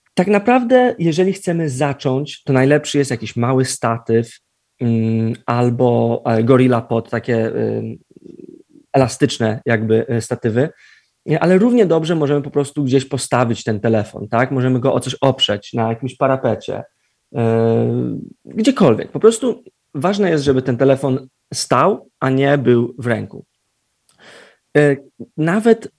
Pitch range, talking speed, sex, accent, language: 120-150 Hz, 120 wpm, male, native, Polish